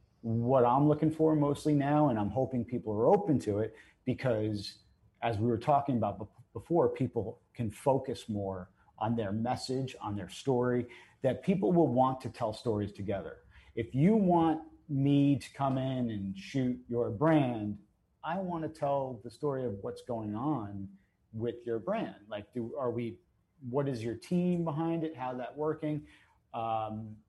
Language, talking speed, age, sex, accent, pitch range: English, 170 wpm, 40-59, male, American, 105-130 Hz